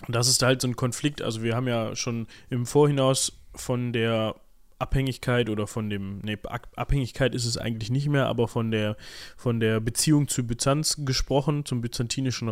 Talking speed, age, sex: 175 wpm, 20-39, male